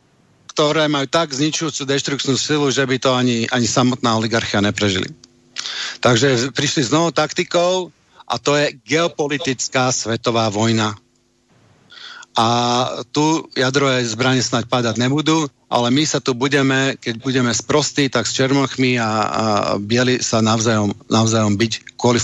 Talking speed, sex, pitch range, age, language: 135 wpm, male, 120-150 Hz, 50-69, Slovak